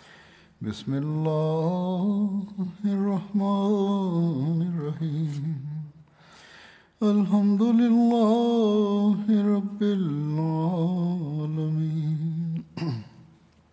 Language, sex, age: Tamil, male, 60-79